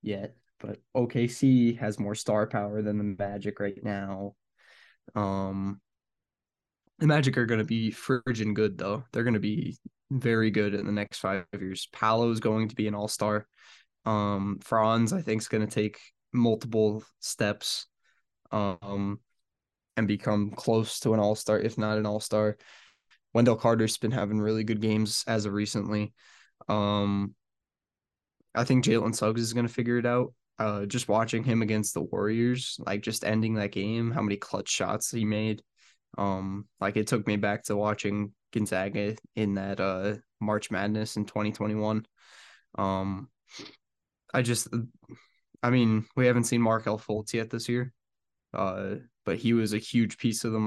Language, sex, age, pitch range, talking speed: English, male, 10-29, 105-115 Hz, 165 wpm